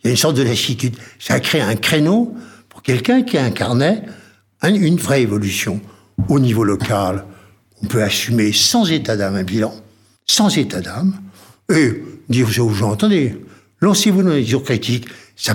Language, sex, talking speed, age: French, male, 170 wpm, 60-79